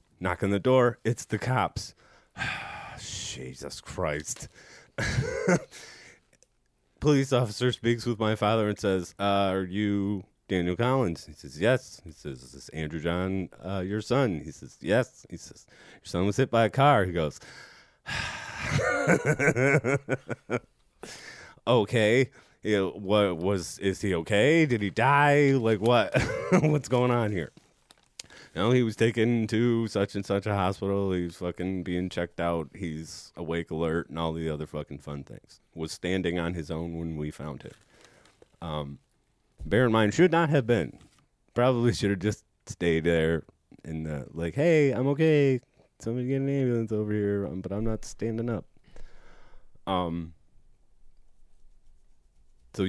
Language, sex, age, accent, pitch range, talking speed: English, male, 30-49, American, 85-120 Hz, 150 wpm